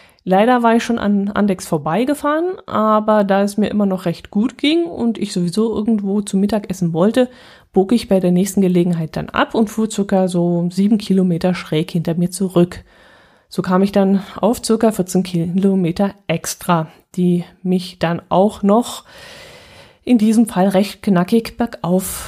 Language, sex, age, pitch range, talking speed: German, female, 20-39, 180-215 Hz, 165 wpm